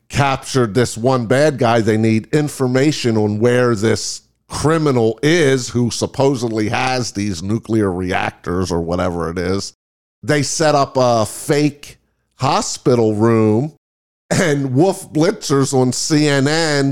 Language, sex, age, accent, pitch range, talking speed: English, male, 50-69, American, 110-150 Hz, 125 wpm